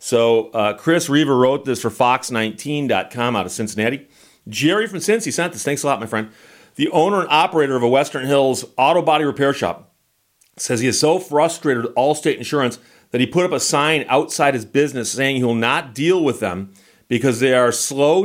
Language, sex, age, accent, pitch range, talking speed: English, male, 40-59, American, 115-150 Hz, 200 wpm